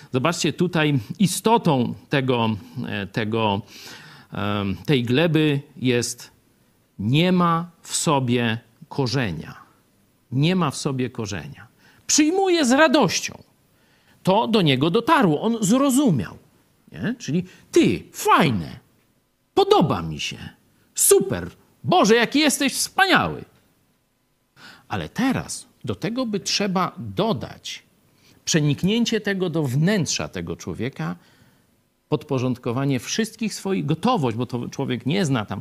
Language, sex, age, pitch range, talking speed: Polish, male, 50-69, 125-205 Hz, 100 wpm